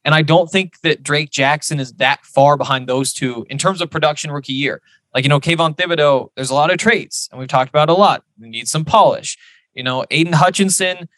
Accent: American